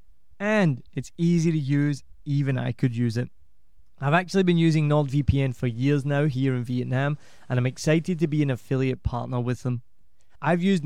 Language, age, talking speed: English, 20-39, 180 wpm